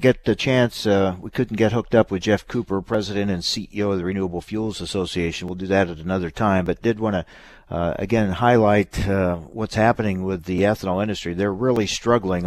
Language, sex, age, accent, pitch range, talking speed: English, male, 50-69, American, 95-115 Hz, 200 wpm